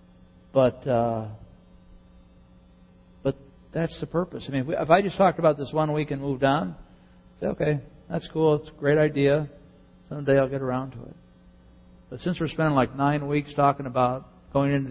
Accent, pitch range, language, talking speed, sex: American, 90-140 Hz, English, 190 wpm, male